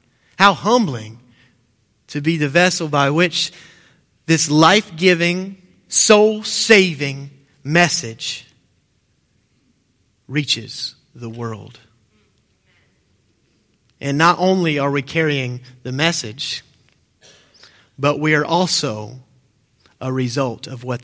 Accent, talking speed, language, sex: American, 90 wpm, English, male